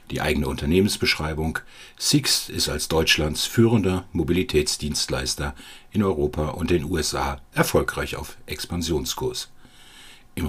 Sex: male